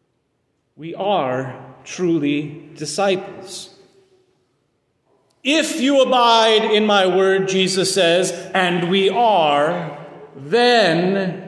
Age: 40-59